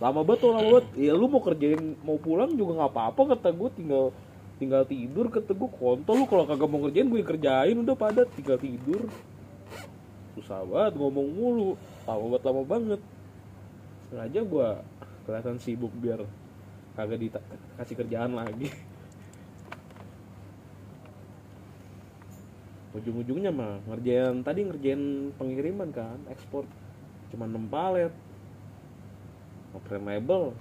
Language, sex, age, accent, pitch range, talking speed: Indonesian, male, 20-39, native, 100-145 Hz, 120 wpm